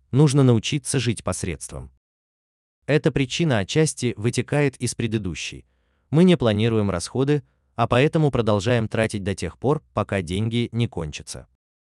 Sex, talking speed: male, 125 wpm